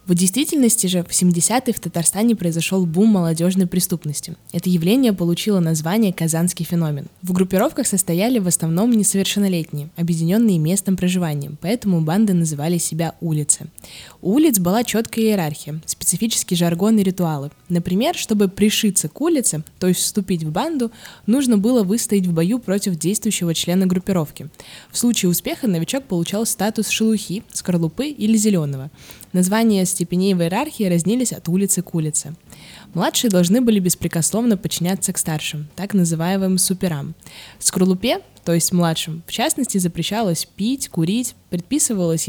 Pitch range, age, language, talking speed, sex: 170-215 Hz, 20-39, Russian, 140 wpm, female